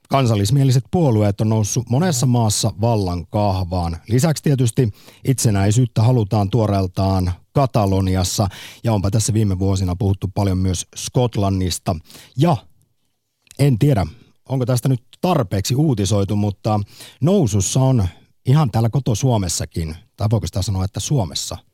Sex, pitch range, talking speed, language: male, 95-130 Hz, 120 wpm, Finnish